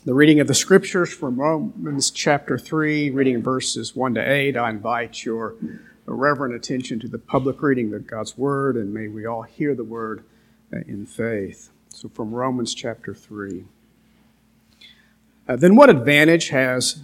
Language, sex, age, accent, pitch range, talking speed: English, male, 50-69, American, 120-155 Hz, 155 wpm